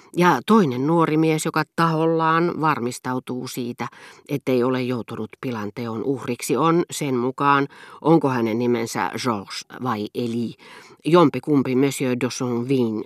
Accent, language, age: native, Finnish, 40-59